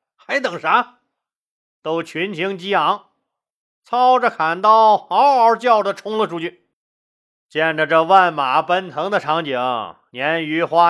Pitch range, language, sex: 185-250 Hz, Chinese, male